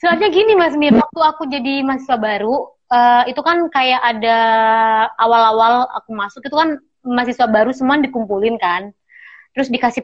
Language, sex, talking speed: Indonesian, female, 155 wpm